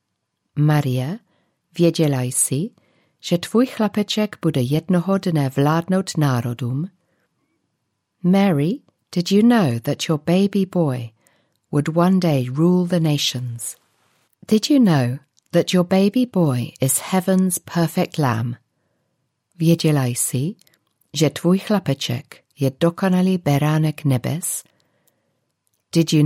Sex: female